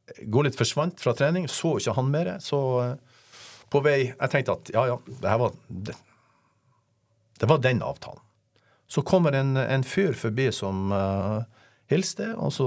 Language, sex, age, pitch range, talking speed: English, male, 50-69, 105-140 Hz, 155 wpm